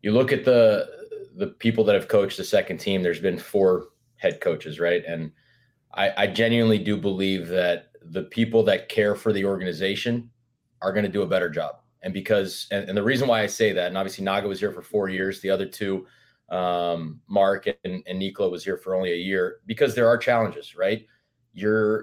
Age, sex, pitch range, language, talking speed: 20-39, male, 95-115 Hz, English, 205 wpm